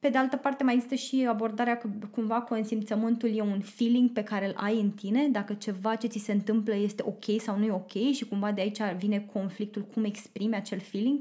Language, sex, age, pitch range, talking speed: Romanian, female, 20-39, 200-250 Hz, 230 wpm